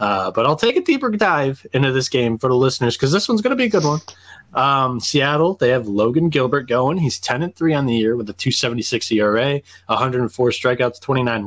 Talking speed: 215 wpm